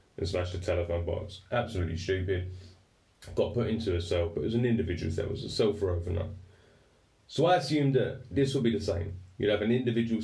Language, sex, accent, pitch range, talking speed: English, male, British, 95-110 Hz, 215 wpm